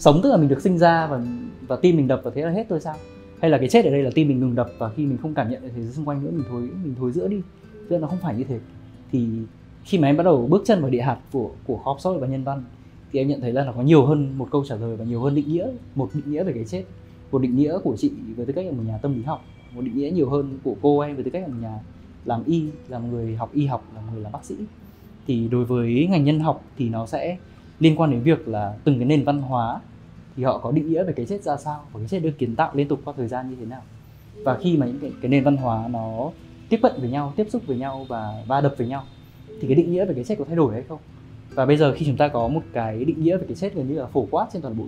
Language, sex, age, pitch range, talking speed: Vietnamese, male, 20-39, 120-155 Hz, 315 wpm